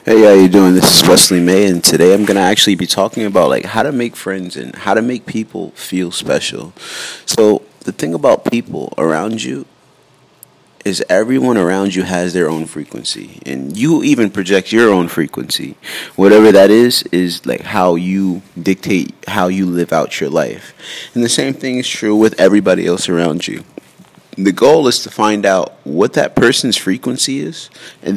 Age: 30-49